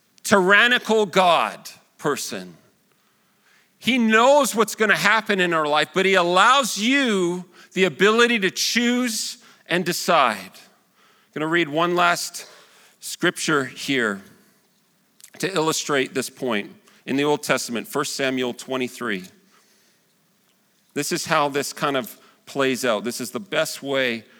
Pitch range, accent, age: 140-200 Hz, American, 40-59